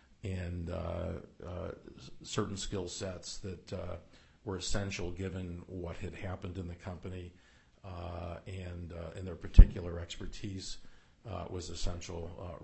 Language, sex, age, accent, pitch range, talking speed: English, male, 50-69, American, 85-100 Hz, 135 wpm